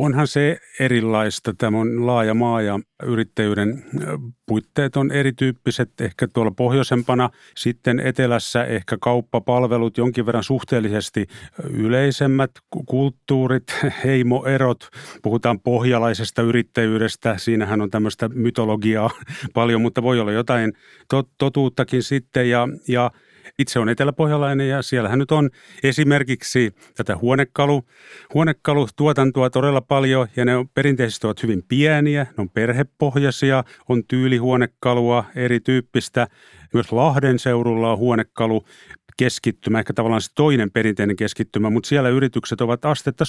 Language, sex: Finnish, male